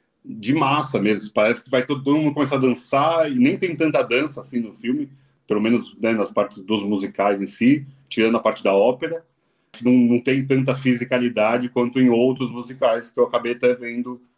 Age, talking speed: 40-59, 195 wpm